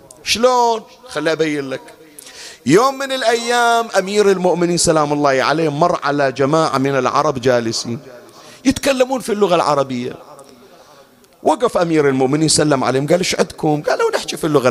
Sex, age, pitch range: male, 40-59, 155-245 Hz